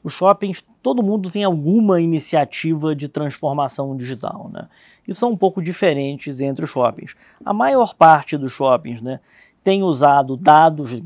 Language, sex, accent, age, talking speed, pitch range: Portuguese, male, Brazilian, 20-39, 150 wpm, 140-170 Hz